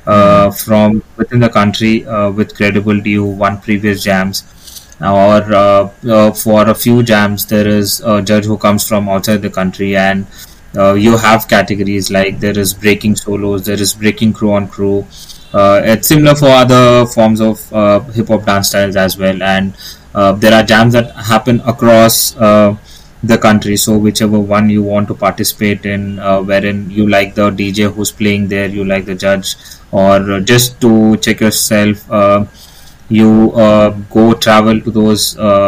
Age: 20-39